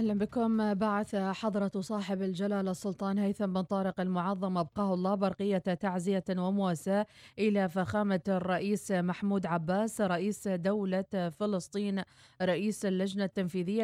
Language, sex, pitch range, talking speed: Arabic, female, 180-205 Hz, 115 wpm